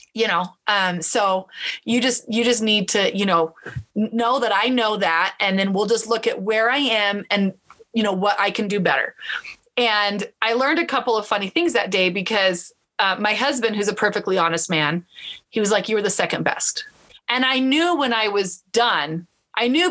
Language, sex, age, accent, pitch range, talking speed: English, female, 30-49, American, 195-245 Hz, 210 wpm